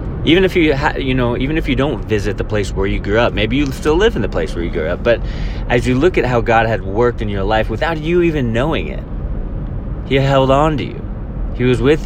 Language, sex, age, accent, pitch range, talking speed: English, male, 30-49, American, 100-125 Hz, 260 wpm